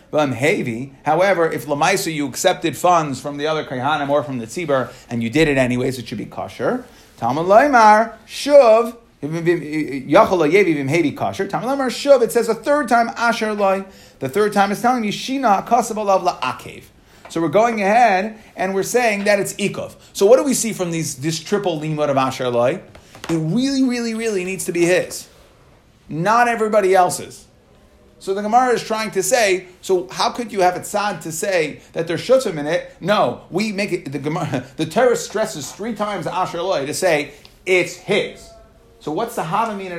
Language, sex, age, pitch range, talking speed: English, male, 30-49, 155-220 Hz, 180 wpm